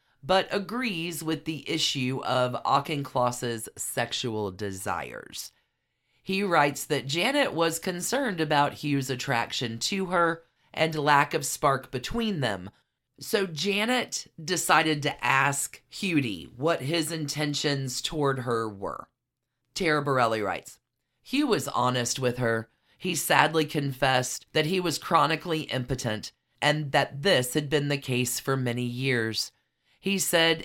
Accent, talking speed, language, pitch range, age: American, 130 wpm, English, 125-165 Hz, 40-59